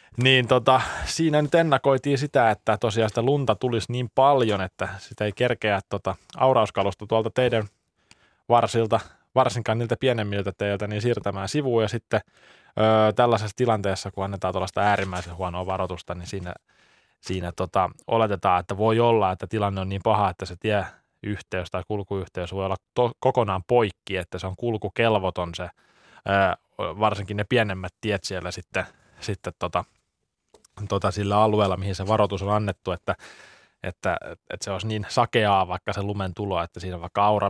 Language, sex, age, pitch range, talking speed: Finnish, male, 20-39, 95-110 Hz, 160 wpm